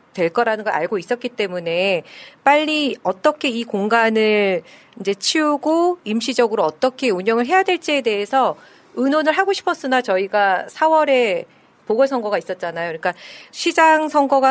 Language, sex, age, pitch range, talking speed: English, female, 40-59, 205-275 Hz, 120 wpm